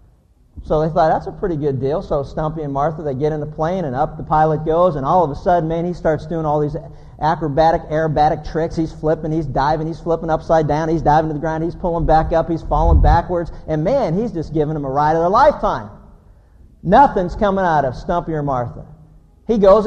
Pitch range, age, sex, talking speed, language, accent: 155-195 Hz, 50-69, male, 230 wpm, English, American